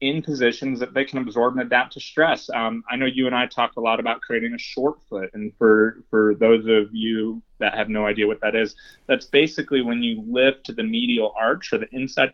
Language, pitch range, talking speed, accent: English, 115-140 Hz, 240 wpm, American